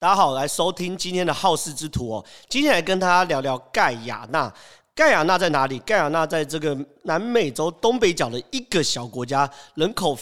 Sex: male